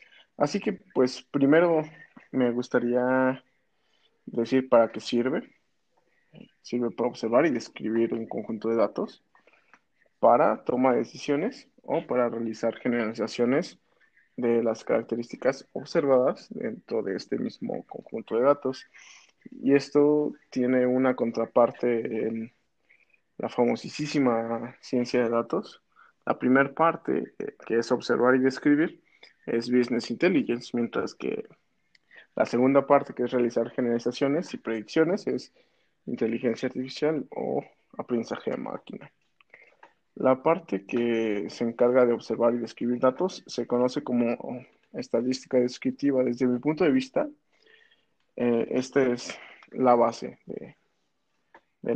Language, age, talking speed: Spanish, 20-39, 120 wpm